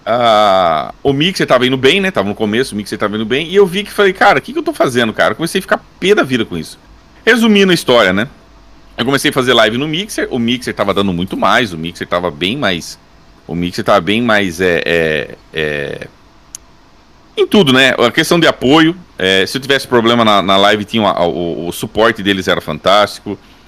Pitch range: 105-170 Hz